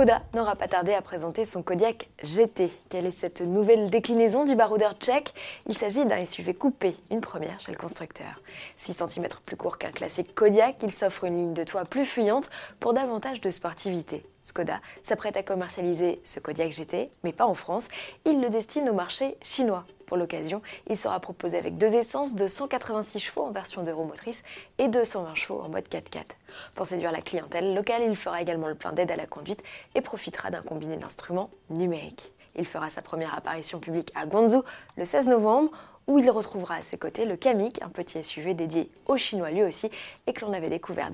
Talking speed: 200 wpm